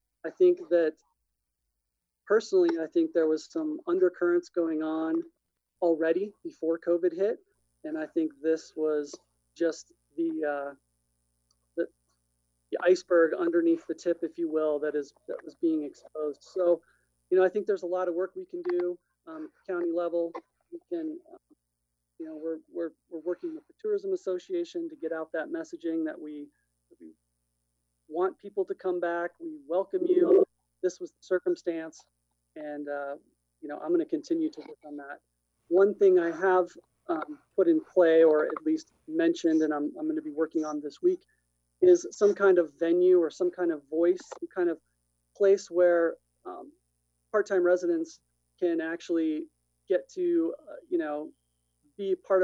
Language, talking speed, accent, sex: English, 170 wpm, American, male